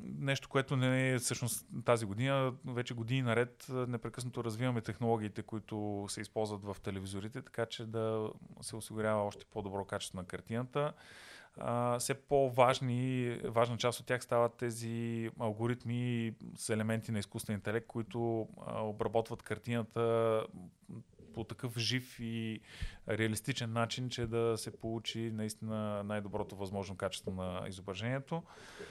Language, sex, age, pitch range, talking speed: Bulgarian, male, 30-49, 105-125 Hz, 125 wpm